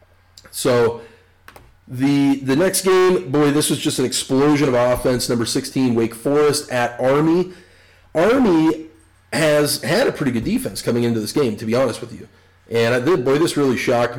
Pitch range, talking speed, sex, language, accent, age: 115-135 Hz, 180 wpm, male, English, American, 30-49